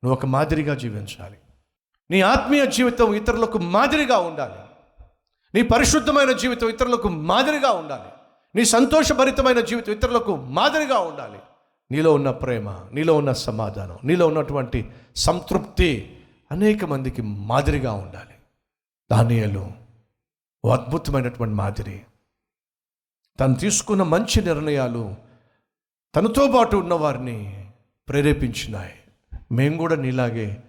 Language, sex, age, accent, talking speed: Telugu, male, 50-69, native, 95 wpm